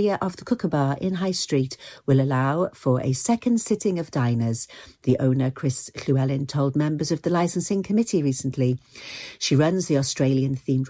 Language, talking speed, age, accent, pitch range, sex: English, 165 wpm, 50-69, British, 140-195 Hz, female